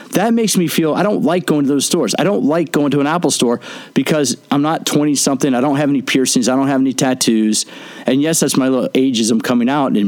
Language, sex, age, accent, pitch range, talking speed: English, male, 40-59, American, 130-185 Hz, 255 wpm